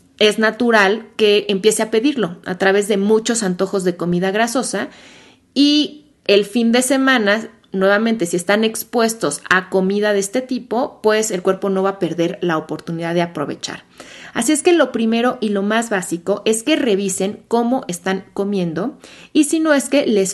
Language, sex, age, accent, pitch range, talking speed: Spanish, female, 30-49, Mexican, 180-230 Hz, 175 wpm